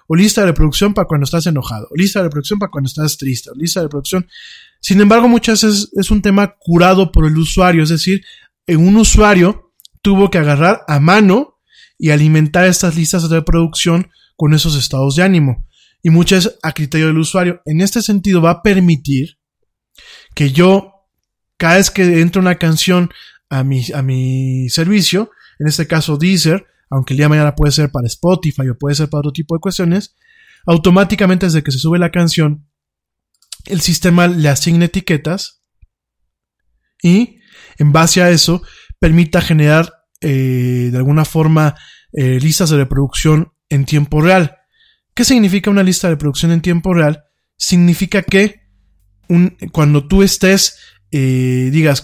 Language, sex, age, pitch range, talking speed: Spanish, male, 20-39, 150-190 Hz, 165 wpm